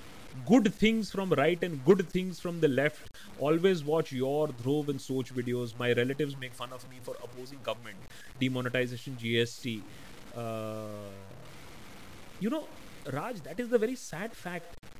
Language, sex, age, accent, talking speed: Hindi, male, 30-49, native, 155 wpm